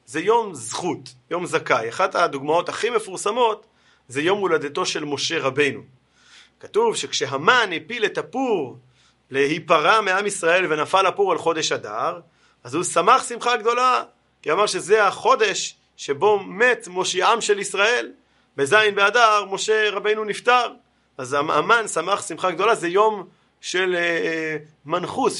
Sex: male